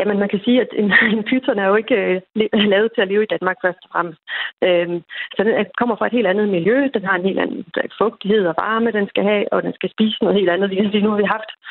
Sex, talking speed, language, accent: female, 250 wpm, Danish, native